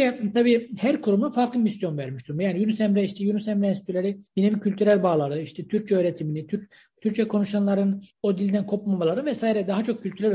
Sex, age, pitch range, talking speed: male, 60-79, 185-235 Hz, 170 wpm